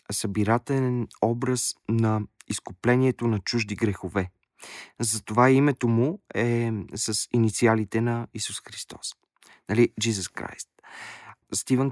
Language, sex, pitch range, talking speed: Bulgarian, male, 100-115 Hz, 100 wpm